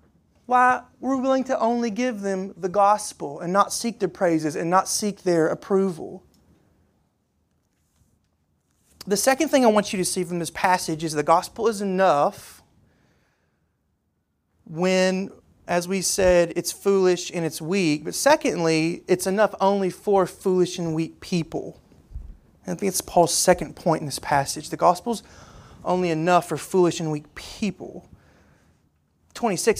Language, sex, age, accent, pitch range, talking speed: English, male, 30-49, American, 165-220 Hz, 150 wpm